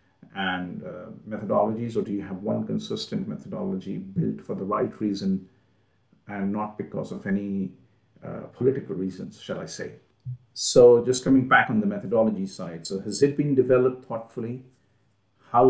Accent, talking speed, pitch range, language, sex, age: Indian, 155 wpm, 100-135 Hz, English, male, 50-69